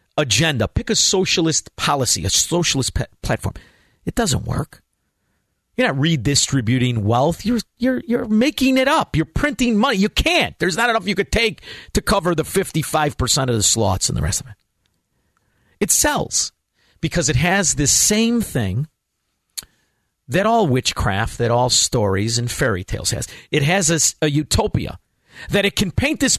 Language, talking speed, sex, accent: English, 160 wpm, male, American